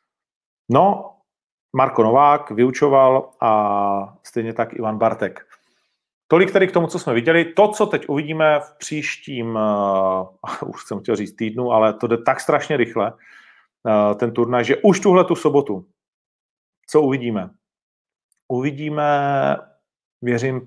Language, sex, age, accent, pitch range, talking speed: Czech, male, 40-59, native, 105-130 Hz, 135 wpm